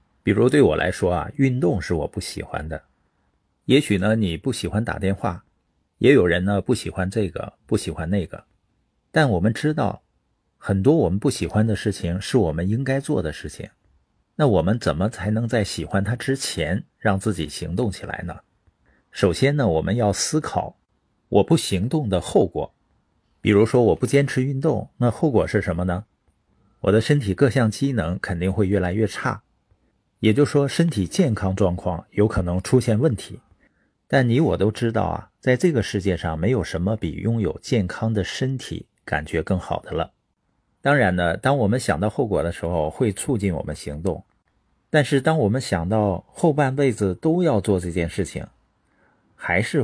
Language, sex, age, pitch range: Chinese, male, 50-69, 90-130 Hz